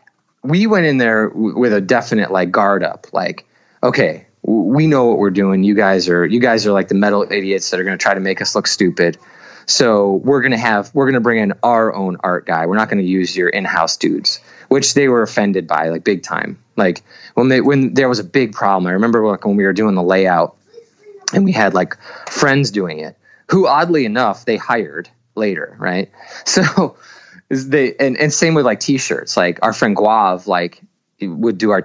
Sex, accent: male, American